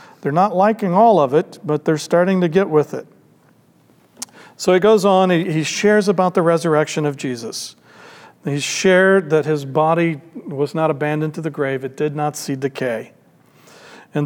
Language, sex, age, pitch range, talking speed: English, male, 50-69, 140-185 Hz, 175 wpm